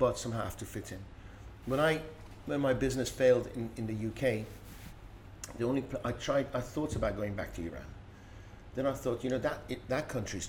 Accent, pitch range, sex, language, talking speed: British, 100-125 Hz, male, English, 210 wpm